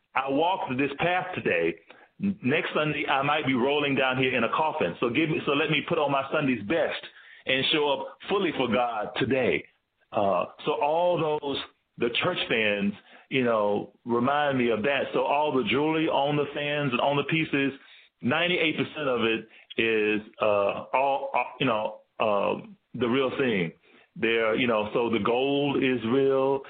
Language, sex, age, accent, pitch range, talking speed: English, male, 40-59, American, 115-140 Hz, 180 wpm